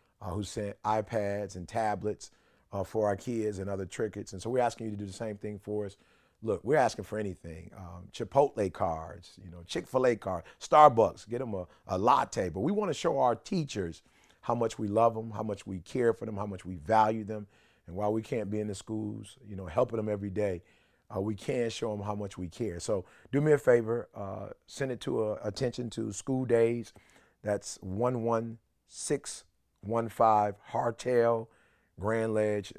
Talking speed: 200 wpm